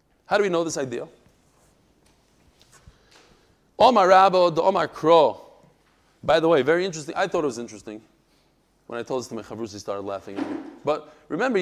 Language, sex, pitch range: English, male, 160-220 Hz